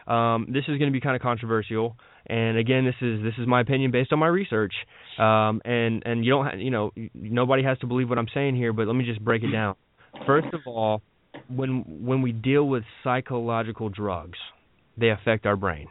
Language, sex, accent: English, male, American